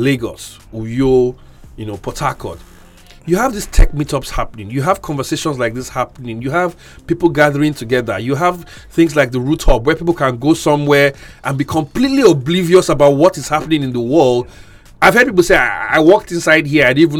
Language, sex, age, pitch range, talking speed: English, male, 30-49, 120-160 Hz, 200 wpm